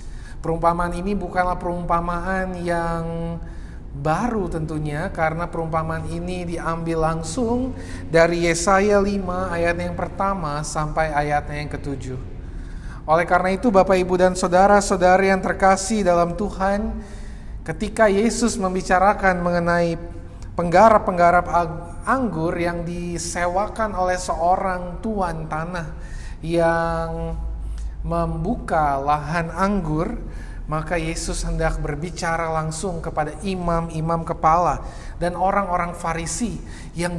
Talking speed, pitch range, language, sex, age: 100 wpm, 160-185 Hz, Indonesian, male, 30-49